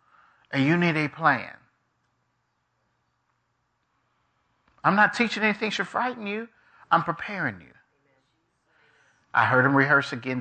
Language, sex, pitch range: English, male, 105-135 Hz